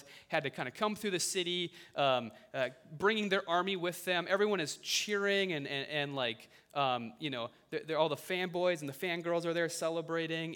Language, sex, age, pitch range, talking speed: English, male, 30-49, 140-195 Hz, 205 wpm